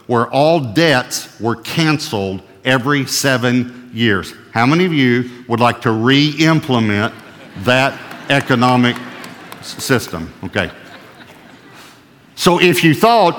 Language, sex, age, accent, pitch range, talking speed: English, male, 50-69, American, 115-160 Hz, 110 wpm